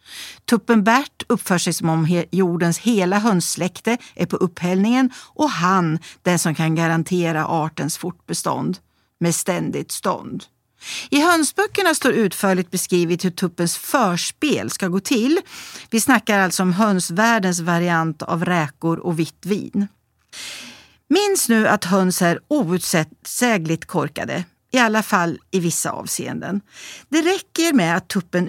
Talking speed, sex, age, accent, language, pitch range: 135 wpm, female, 50-69, native, Swedish, 175-240 Hz